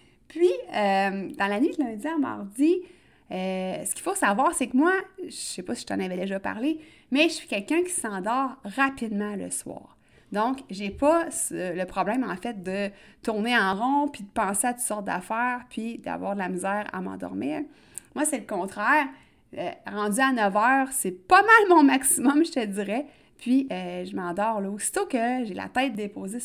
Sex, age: female, 30-49